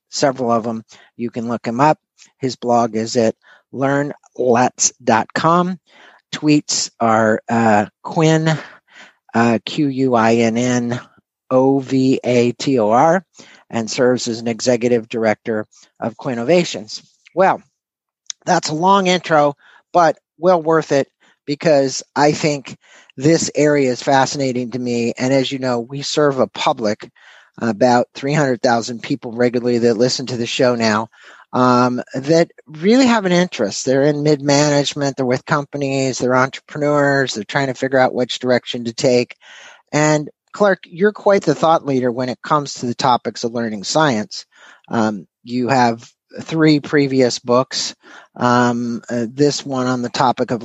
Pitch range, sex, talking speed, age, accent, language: 120-145 Hz, male, 135 wpm, 50-69, American, English